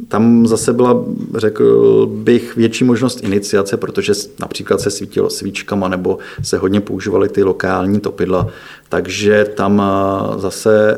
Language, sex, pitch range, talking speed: Czech, male, 95-110 Hz, 125 wpm